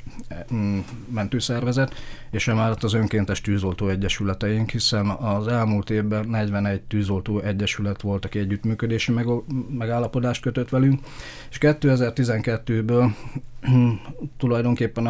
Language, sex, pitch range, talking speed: Hungarian, male, 105-120 Hz, 90 wpm